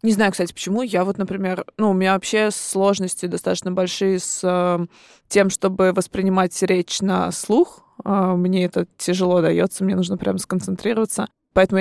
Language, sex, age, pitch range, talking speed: Russian, female, 20-39, 185-205 Hz, 155 wpm